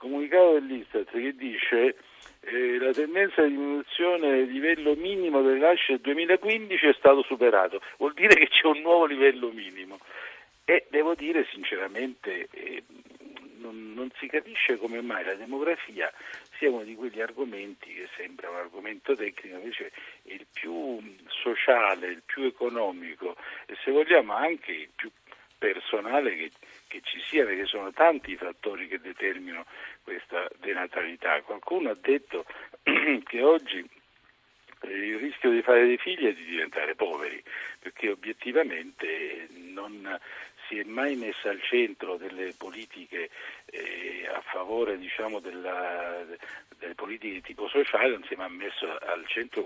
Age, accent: 50-69, native